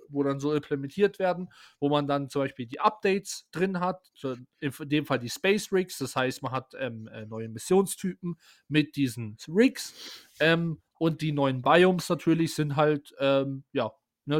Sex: male